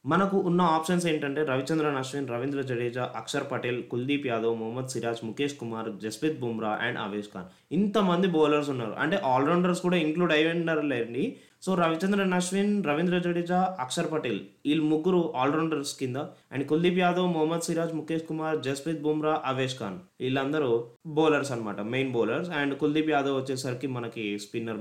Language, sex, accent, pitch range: Telugu, male, native, 130-180 Hz